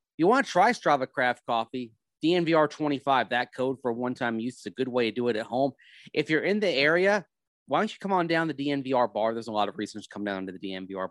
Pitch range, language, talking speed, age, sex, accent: 110-150 Hz, English, 265 wpm, 30-49, male, American